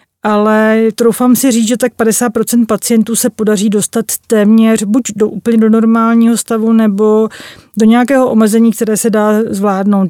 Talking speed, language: 155 wpm, Czech